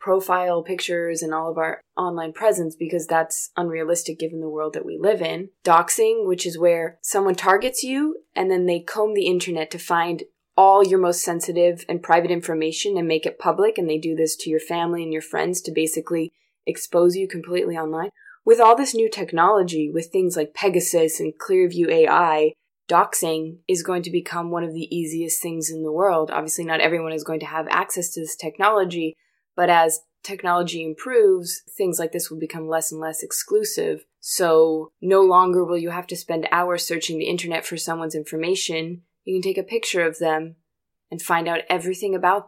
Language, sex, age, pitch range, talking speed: English, female, 20-39, 165-190 Hz, 190 wpm